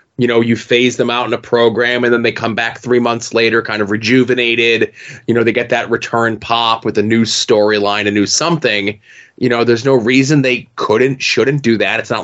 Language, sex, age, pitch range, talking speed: English, male, 20-39, 115-140 Hz, 225 wpm